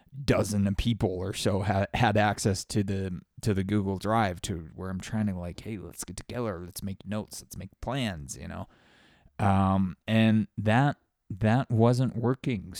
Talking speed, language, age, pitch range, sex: 180 wpm, English, 20-39, 95-120 Hz, male